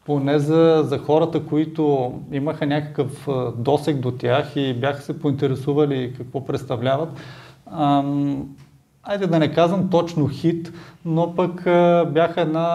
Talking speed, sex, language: 130 wpm, male, Bulgarian